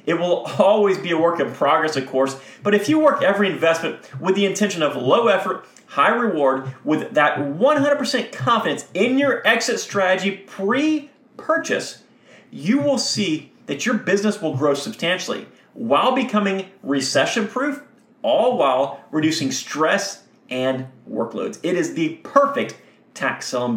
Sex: male